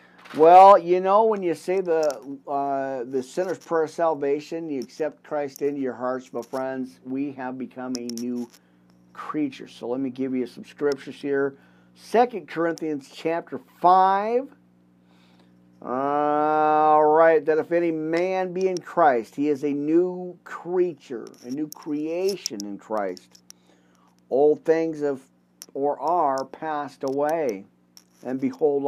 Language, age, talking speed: English, 50-69, 140 wpm